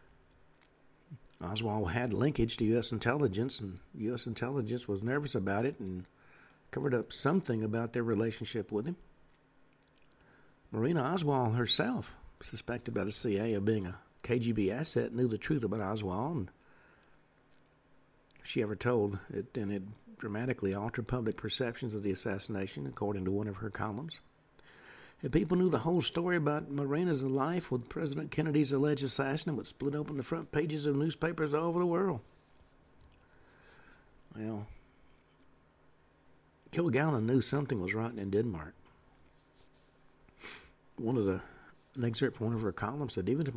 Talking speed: 145 wpm